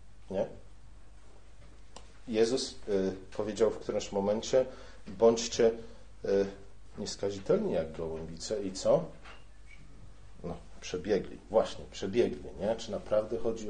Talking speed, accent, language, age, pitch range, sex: 95 wpm, native, Polish, 40-59, 100-130 Hz, male